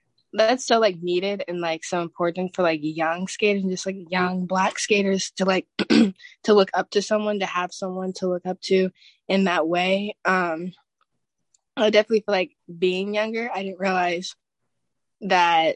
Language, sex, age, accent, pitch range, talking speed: English, female, 10-29, American, 165-190 Hz, 175 wpm